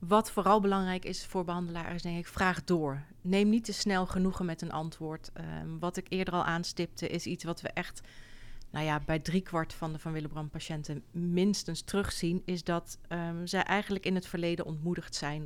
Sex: female